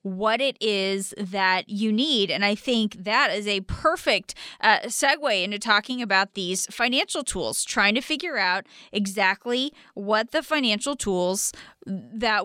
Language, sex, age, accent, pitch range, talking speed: English, female, 20-39, American, 210-260 Hz, 150 wpm